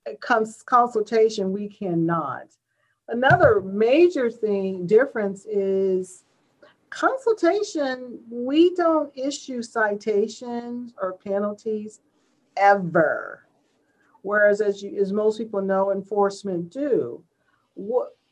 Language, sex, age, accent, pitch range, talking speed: English, female, 40-59, American, 200-250 Hz, 90 wpm